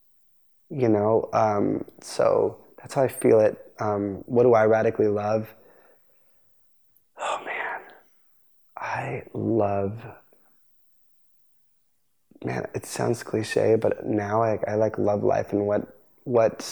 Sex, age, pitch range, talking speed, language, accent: male, 20-39, 105-115 Hz, 120 wpm, English, American